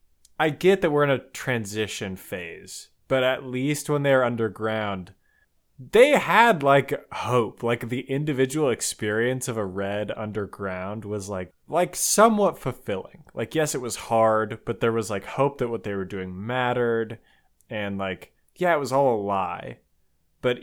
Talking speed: 165 wpm